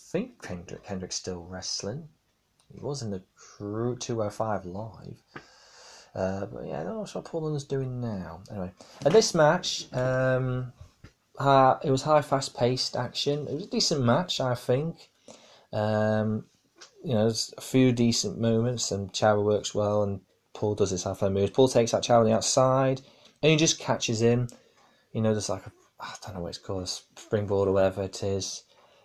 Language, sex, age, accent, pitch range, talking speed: English, male, 20-39, British, 105-135 Hz, 185 wpm